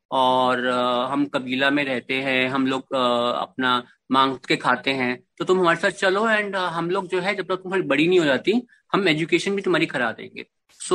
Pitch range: 135-190 Hz